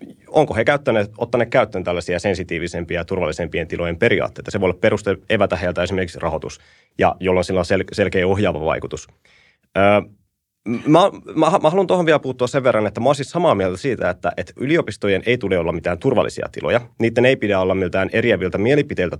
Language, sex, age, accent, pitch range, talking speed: Finnish, male, 30-49, native, 90-120 Hz, 190 wpm